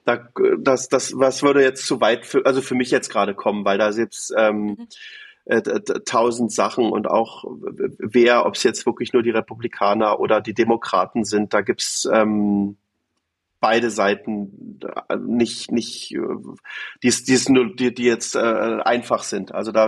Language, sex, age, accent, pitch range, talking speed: German, male, 40-59, German, 105-130 Hz, 170 wpm